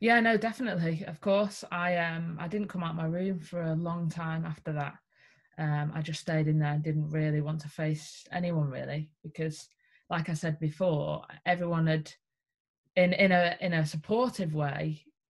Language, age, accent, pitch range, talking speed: English, 20-39, British, 155-175 Hz, 190 wpm